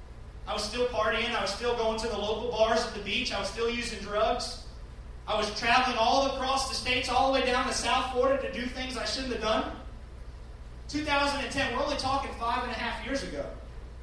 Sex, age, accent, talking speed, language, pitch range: male, 30-49, American, 220 wpm, English, 220-270 Hz